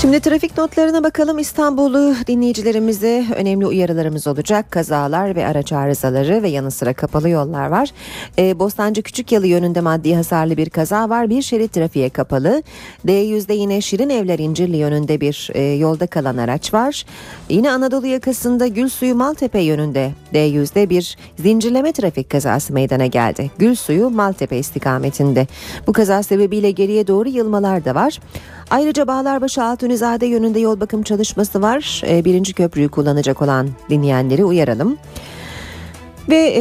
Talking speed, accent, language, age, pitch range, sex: 145 wpm, native, Turkish, 40-59, 150-235 Hz, female